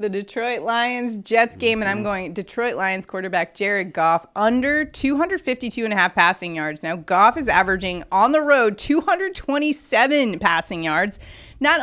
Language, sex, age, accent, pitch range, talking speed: English, female, 30-49, American, 195-265 Hz, 155 wpm